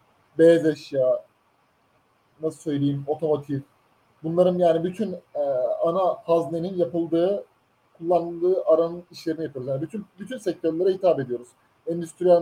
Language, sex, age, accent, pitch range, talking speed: Turkish, male, 30-49, native, 155-190 Hz, 110 wpm